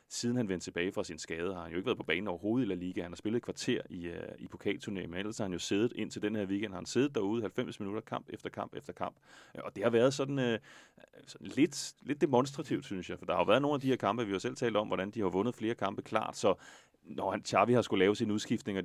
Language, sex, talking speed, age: Danish, male, 290 wpm, 30-49